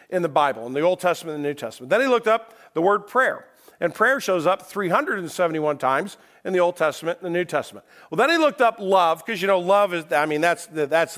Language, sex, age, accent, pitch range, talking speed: English, male, 50-69, American, 140-175 Hz, 245 wpm